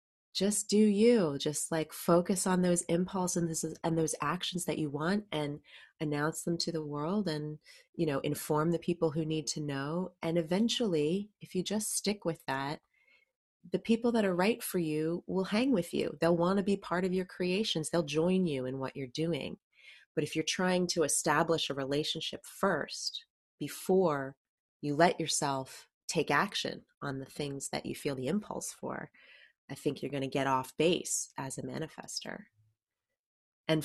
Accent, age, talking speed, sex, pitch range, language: American, 30-49, 180 wpm, female, 140-175 Hz, English